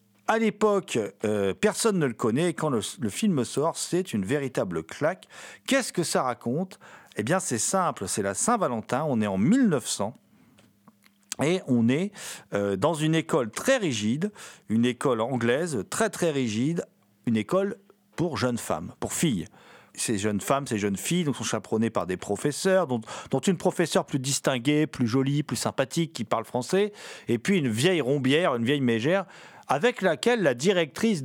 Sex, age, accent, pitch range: male, 40-59, French, 120-200 Hz